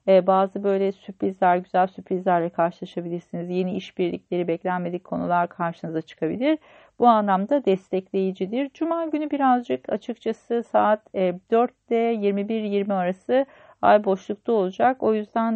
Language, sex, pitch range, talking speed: Turkish, female, 185-235 Hz, 110 wpm